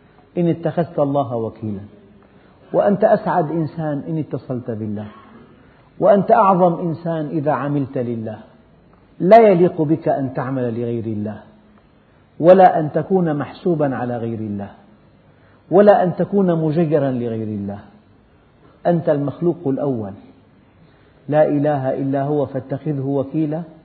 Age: 50-69